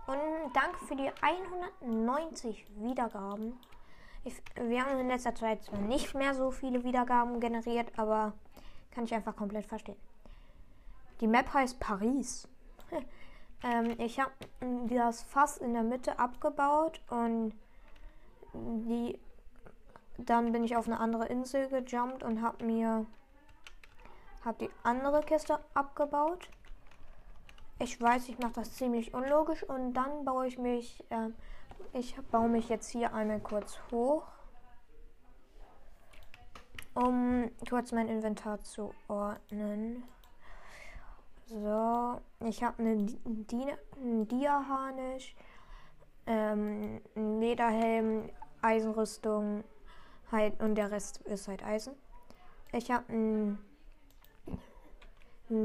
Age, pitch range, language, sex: 20-39, 220-260 Hz, German, female